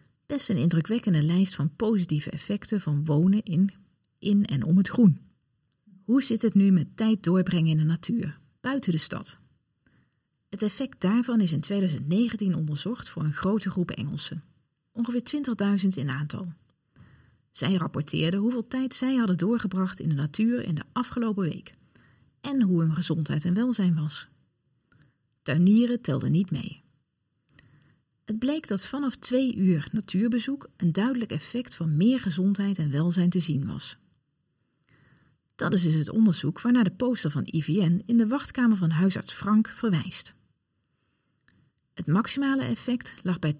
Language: Dutch